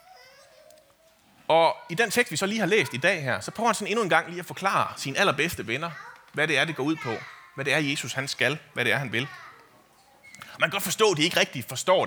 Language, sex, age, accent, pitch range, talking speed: Danish, male, 30-49, native, 125-205 Hz, 265 wpm